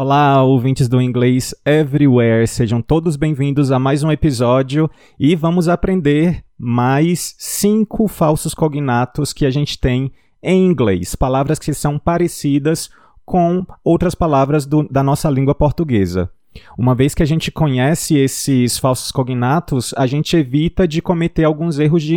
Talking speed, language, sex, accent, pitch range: 145 wpm, Portuguese, male, Brazilian, 135-165 Hz